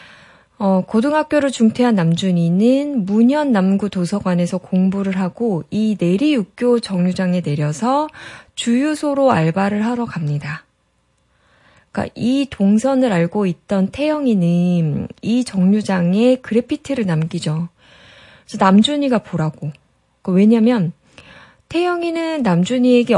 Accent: native